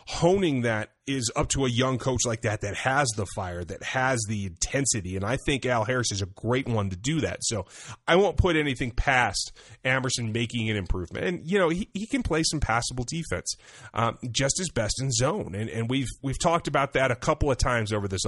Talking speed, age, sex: 225 wpm, 30-49, male